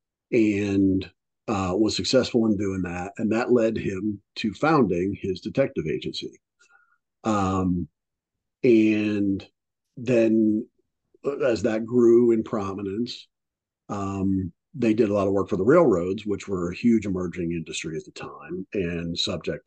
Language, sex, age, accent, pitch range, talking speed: English, male, 50-69, American, 90-115 Hz, 135 wpm